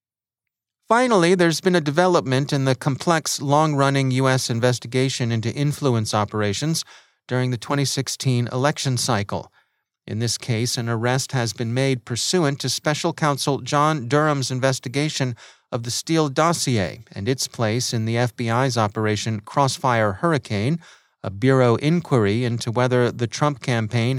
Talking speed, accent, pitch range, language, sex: 135 wpm, American, 115-140 Hz, English, male